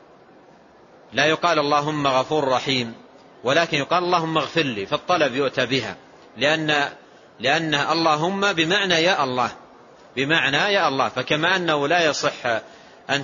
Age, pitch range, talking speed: 40-59, 130-160 Hz, 120 wpm